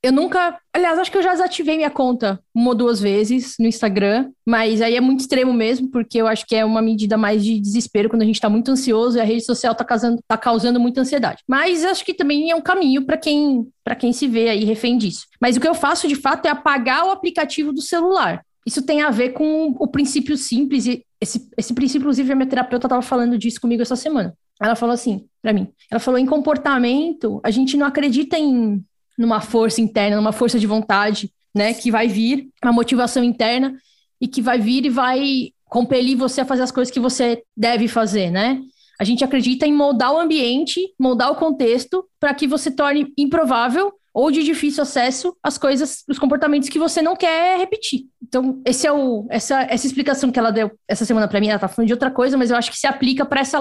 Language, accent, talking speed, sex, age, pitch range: Portuguese, Brazilian, 225 wpm, female, 20-39, 230-285 Hz